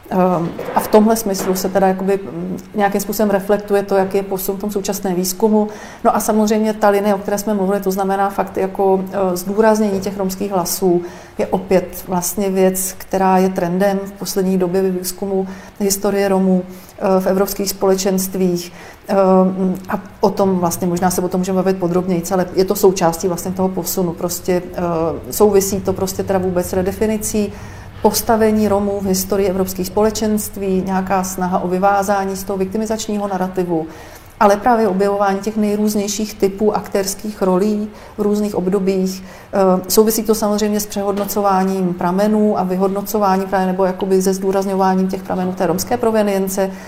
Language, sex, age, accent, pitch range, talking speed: Czech, female, 40-59, native, 185-205 Hz, 150 wpm